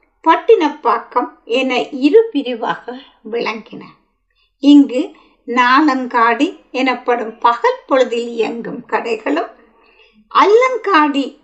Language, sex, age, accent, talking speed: Tamil, female, 50-69, native, 65 wpm